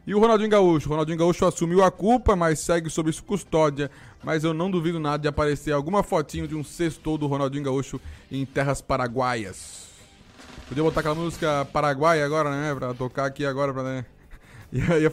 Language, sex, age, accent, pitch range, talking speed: Portuguese, male, 20-39, Brazilian, 135-170 Hz, 185 wpm